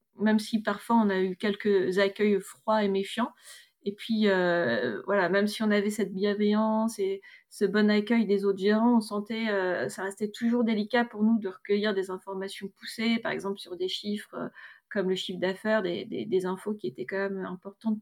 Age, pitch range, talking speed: 30-49, 195-220 Hz, 205 wpm